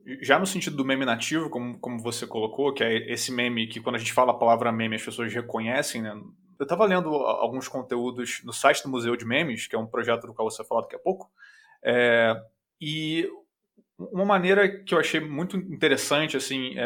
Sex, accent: male, Brazilian